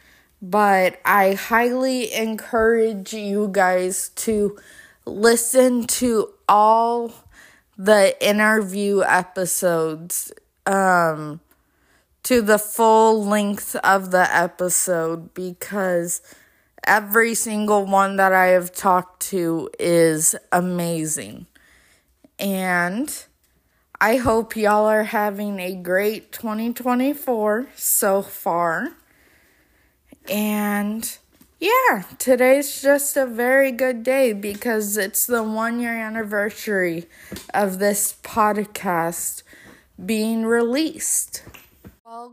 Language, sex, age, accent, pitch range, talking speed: English, female, 20-39, American, 190-245 Hz, 90 wpm